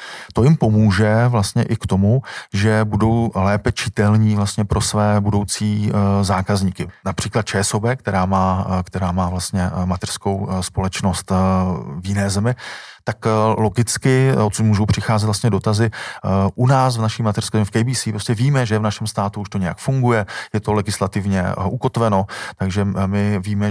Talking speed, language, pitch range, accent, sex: 150 wpm, Czech, 95-110 Hz, native, male